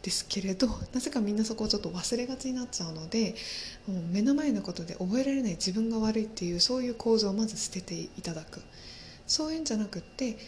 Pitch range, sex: 180-230 Hz, female